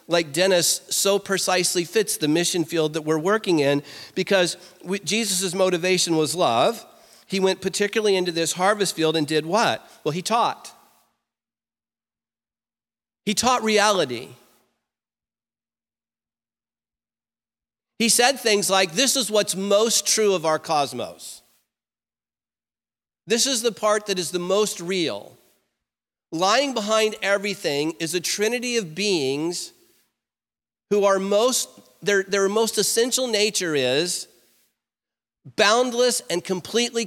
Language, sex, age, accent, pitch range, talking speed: English, male, 50-69, American, 175-225 Hz, 120 wpm